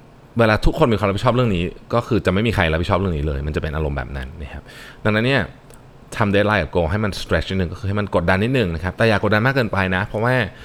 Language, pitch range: Thai, 80-110 Hz